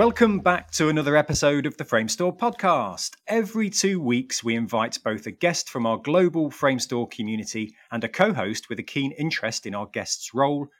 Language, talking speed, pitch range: English, 185 wpm, 110-155 Hz